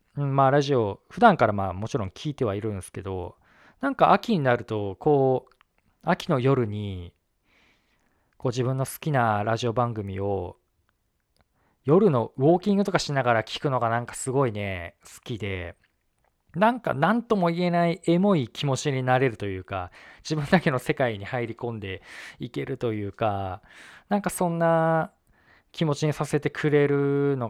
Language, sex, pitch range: Japanese, male, 105-150 Hz